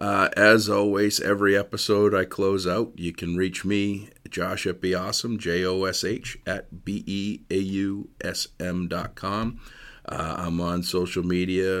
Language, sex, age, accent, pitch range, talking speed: English, male, 40-59, American, 90-105 Hz, 125 wpm